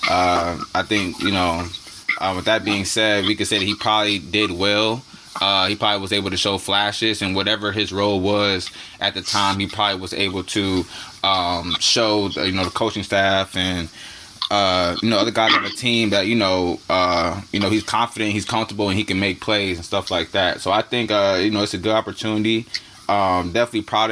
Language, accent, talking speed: English, American, 220 wpm